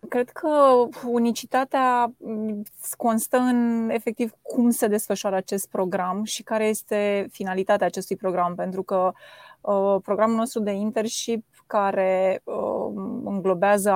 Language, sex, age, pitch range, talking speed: Romanian, female, 20-39, 185-220 Hz, 110 wpm